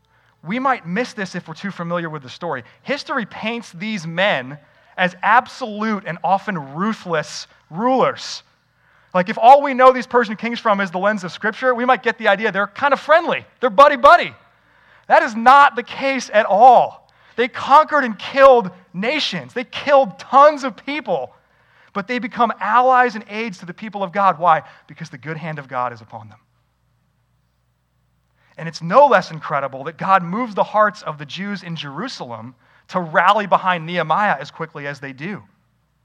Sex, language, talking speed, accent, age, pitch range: male, English, 180 wpm, American, 30-49, 160-235 Hz